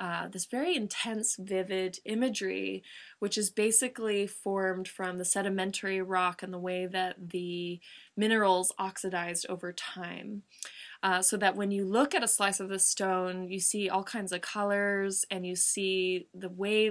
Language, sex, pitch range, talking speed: English, female, 185-215 Hz, 165 wpm